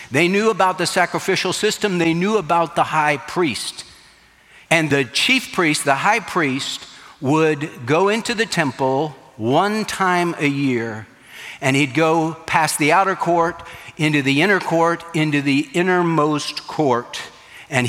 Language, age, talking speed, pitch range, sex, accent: English, 60-79, 150 wpm, 140-180 Hz, male, American